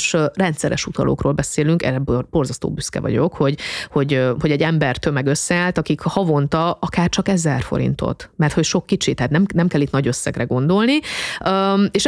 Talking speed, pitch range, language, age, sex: 170 wpm, 140-185 Hz, Hungarian, 30-49, female